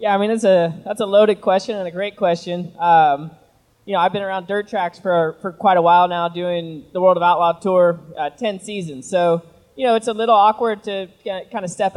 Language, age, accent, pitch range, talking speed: English, 20-39, American, 175-210 Hz, 235 wpm